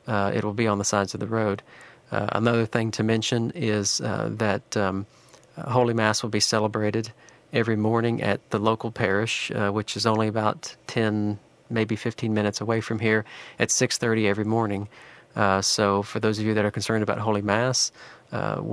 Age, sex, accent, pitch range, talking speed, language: 40-59, male, American, 105-115 Hz, 190 wpm, English